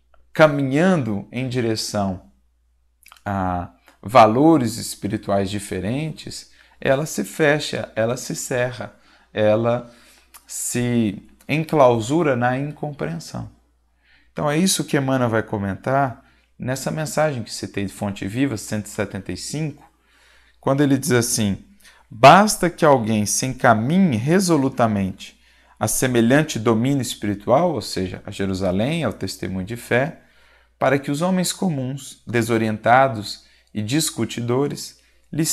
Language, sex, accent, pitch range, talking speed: Portuguese, male, Brazilian, 105-150 Hz, 110 wpm